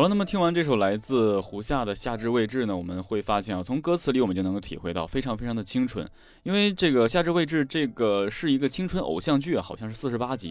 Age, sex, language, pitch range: 20-39, male, Chinese, 95-140 Hz